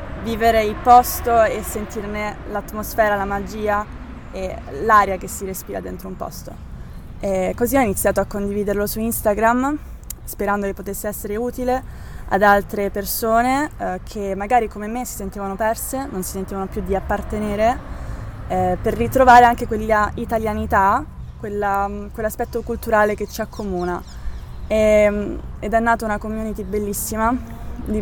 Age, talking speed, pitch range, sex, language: 20-39, 140 wpm, 195-230 Hz, female, Italian